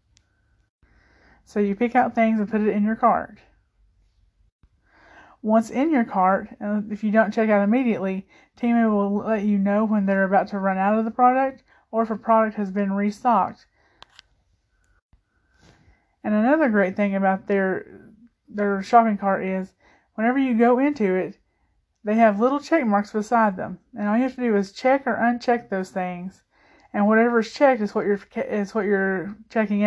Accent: American